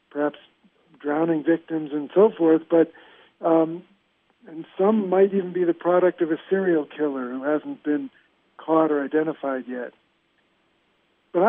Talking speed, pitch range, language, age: 140 wpm, 150-190 Hz, English, 60-79